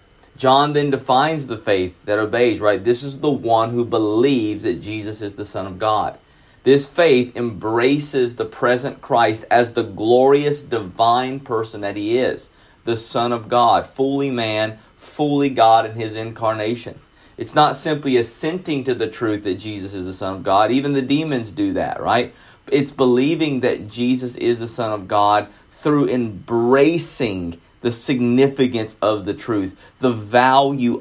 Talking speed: 165 wpm